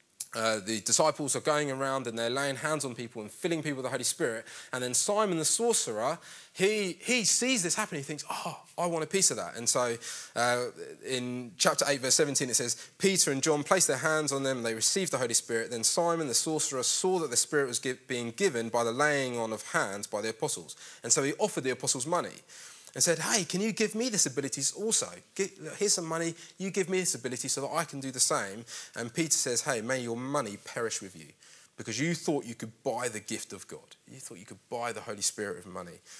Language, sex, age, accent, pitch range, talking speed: English, male, 20-39, British, 120-165 Hz, 240 wpm